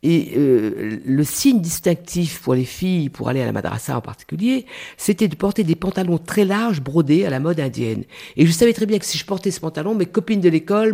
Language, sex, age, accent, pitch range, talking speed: French, female, 50-69, French, 140-195 Hz, 230 wpm